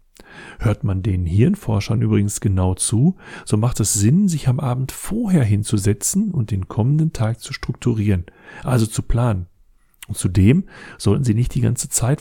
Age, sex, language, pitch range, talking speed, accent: 40-59, male, German, 100-130 Hz, 155 wpm, German